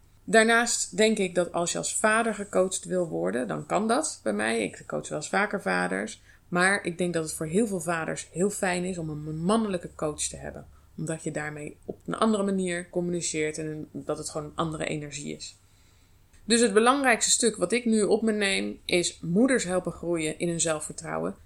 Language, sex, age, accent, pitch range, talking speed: Dutch, female, 20-39, Dutch, 155-205 Hz, 205 wpm